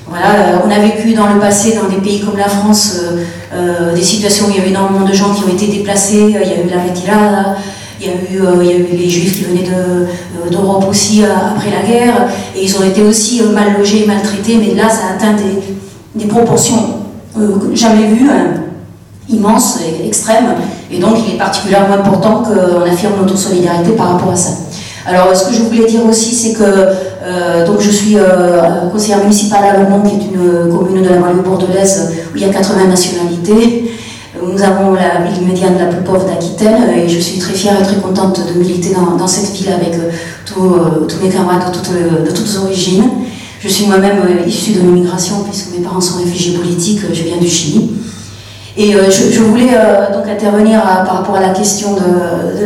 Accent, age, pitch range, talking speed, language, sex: French, 40-59, 180-210 Hz, 220 wpm, French, female